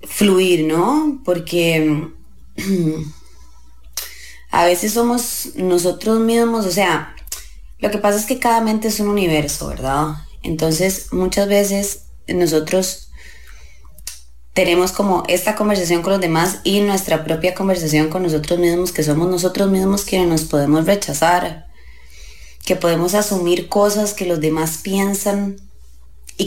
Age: 20-39